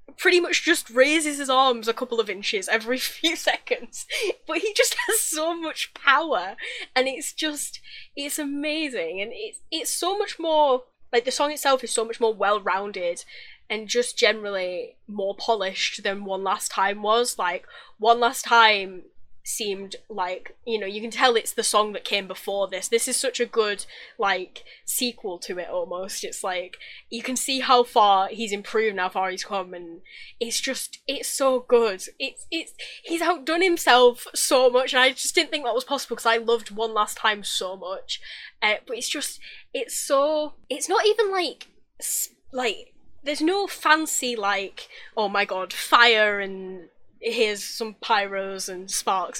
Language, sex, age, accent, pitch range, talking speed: English, female, 10-29, British, 210-315 Hz, 175 wpm